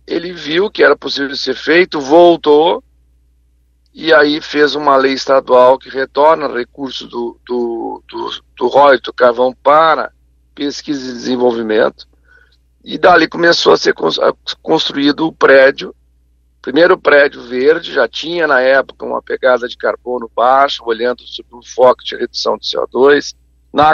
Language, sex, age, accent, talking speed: Portuguese, male, 50-69, Brazilian, 145 wpm